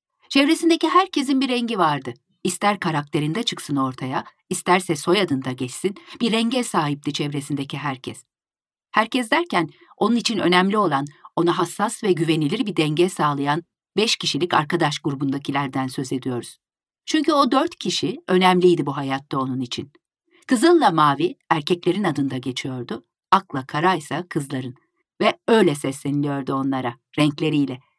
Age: 50-69